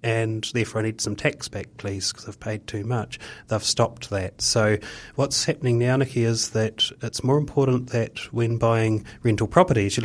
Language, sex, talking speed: English, male, 190 wpm